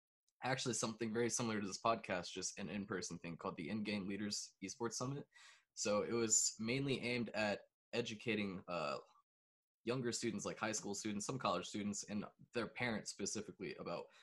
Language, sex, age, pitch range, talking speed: English, male, 20-39, 100-115 Hz, 165 wpm